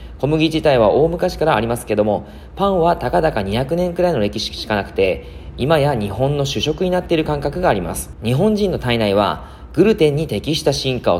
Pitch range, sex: 100-165 Hz, male